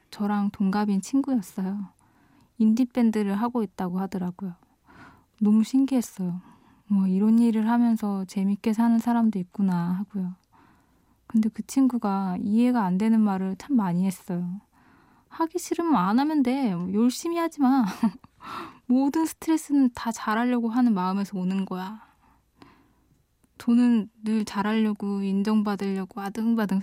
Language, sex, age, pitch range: Korean, female, 10-29, 195-240 Hz